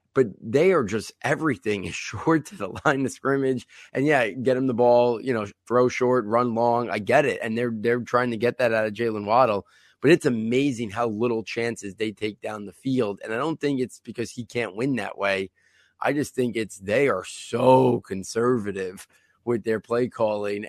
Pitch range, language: 105-125 Hz, English